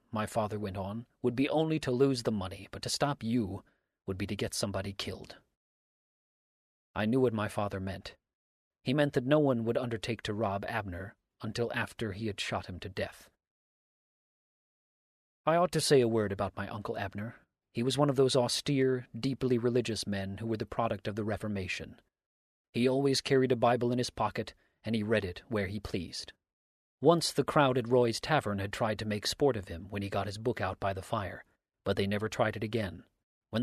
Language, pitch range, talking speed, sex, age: English, 100-125 Hz, 205 wpm, male, 40-59